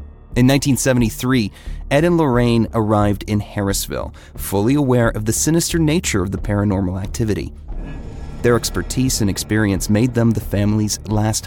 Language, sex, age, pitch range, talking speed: English, male, 30-49, 95-125 Hz, 140 wpm